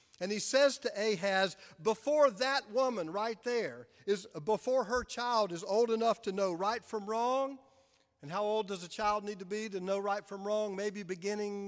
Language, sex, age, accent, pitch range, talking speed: English, male, 50-69, American, 185-235 Hz, 190 wpm